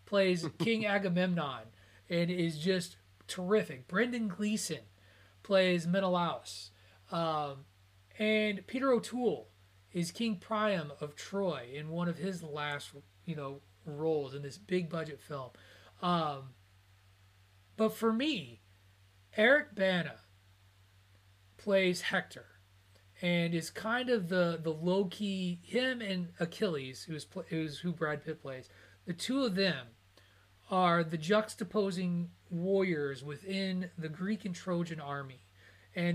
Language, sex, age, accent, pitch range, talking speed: English, male, 30-49, American, 125-185 Hz, 120 wpm